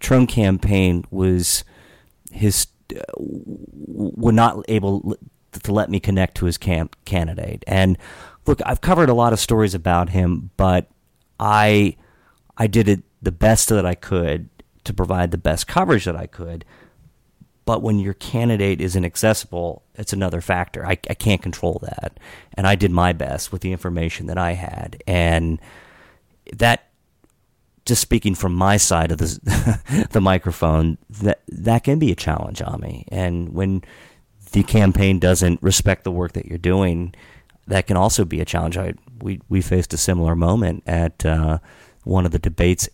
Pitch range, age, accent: 85-105 Hz, 30-49, American